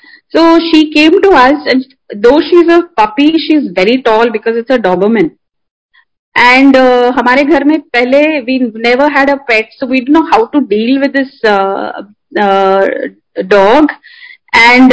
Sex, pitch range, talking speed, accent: female, 215-285 Hz, 165 wpm, native